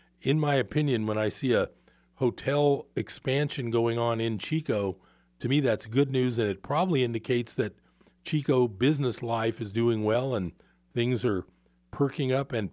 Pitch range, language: 95-135 Hz, English